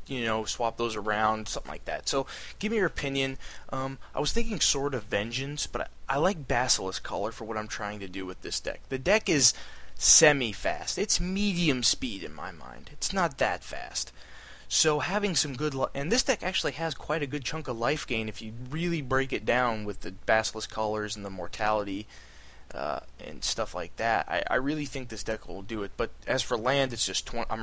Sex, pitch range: male, 110-145 Hz